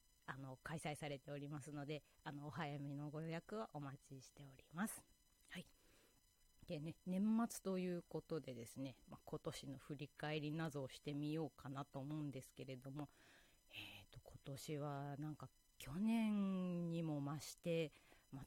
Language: Japanese